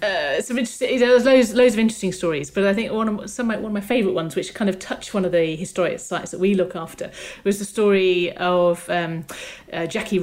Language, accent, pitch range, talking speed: English, British, 175-215 Hz, 240 wpm